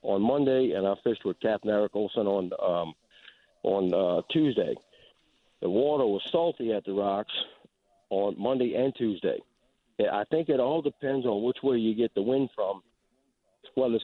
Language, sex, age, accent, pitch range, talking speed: English, male, 50-69, American, 110-130 Hz, 170 wpm